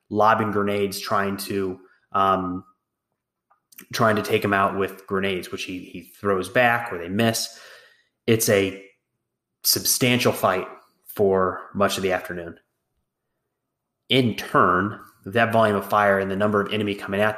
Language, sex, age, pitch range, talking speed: English, male, 20-39, 95-110 Hz, 145 wpm